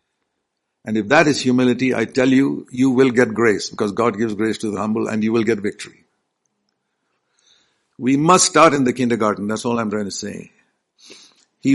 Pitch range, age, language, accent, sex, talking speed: 115-140 Hz, 60-79, English, Indian, male, 190 wpm